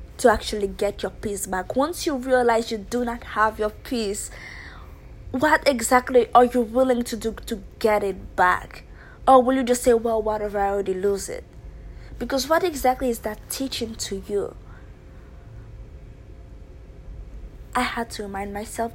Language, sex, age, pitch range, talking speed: English, female, 20-39, 215-275 Hz, 155 wpm